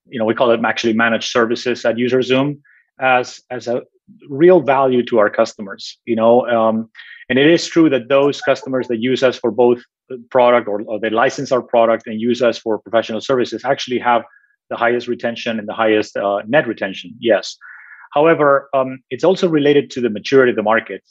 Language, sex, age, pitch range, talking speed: English, male, 30-49, 115-140 Hz, 195 wpm